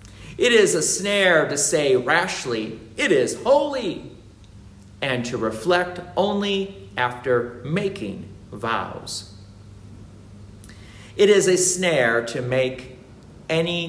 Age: 50-69